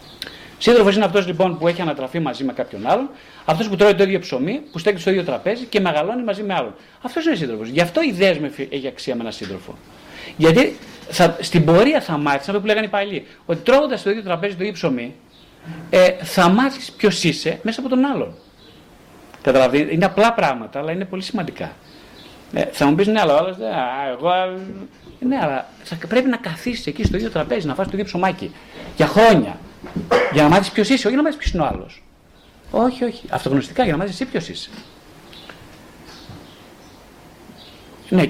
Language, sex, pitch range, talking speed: Greek, male, 160-235 Hz, 180 wpm